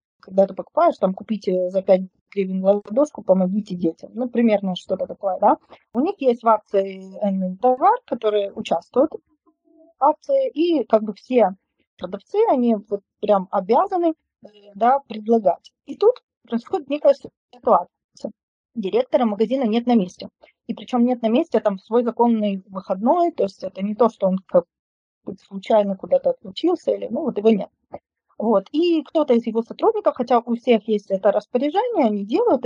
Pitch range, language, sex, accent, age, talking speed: 200-285 Hz, Ukrainian, female, native, 20-39, 160 wpm